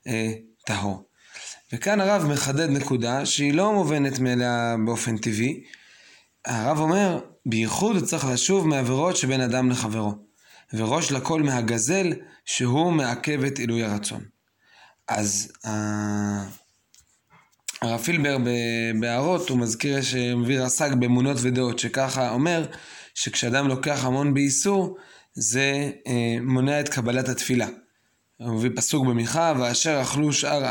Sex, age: male, 20-39